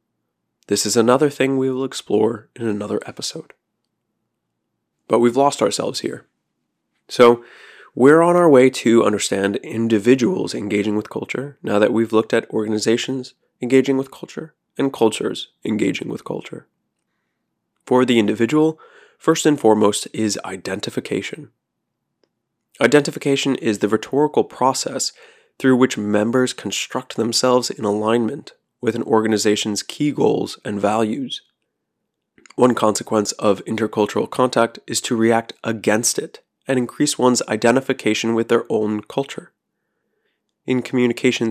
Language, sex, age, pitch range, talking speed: English, male, 20-39, 110-130 Hz, 125 wpm